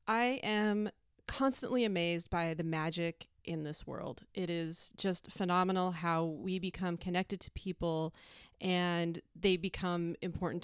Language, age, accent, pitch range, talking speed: English, 30-49, American, 175-230 Hz, 135 wpm